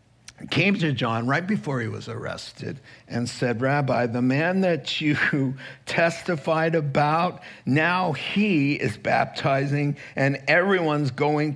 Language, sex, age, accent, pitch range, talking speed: English, male, 50-69, American, 125-160 Hz, 125 wpm